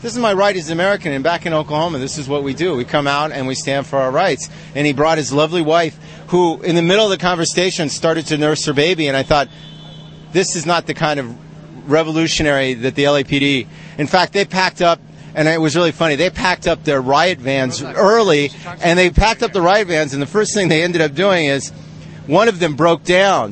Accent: American